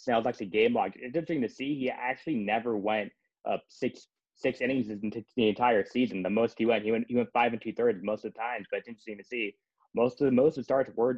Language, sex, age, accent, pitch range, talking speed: English, male, 20-39, American, 105-120 Hz, 265 wpm